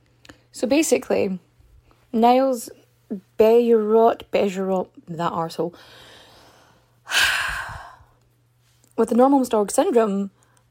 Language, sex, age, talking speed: English, female, 20-39, 65 wpm